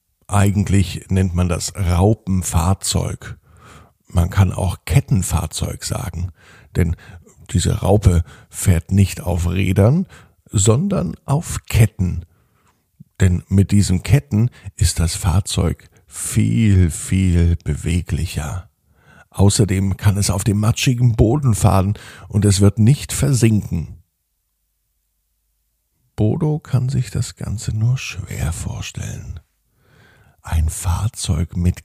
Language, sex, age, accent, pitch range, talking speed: German, male, 50-69, German, 90-110 Hz, 100 wpm